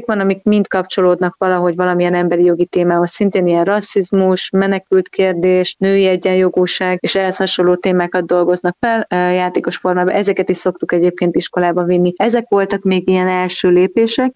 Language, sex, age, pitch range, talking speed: Hungarian, female, 30-49, 185-205 Hz, 145 wpm